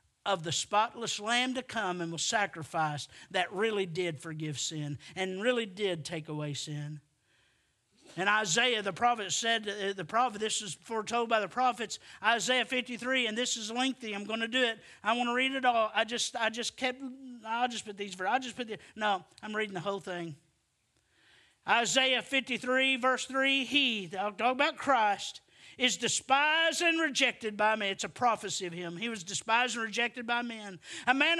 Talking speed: 185 wpm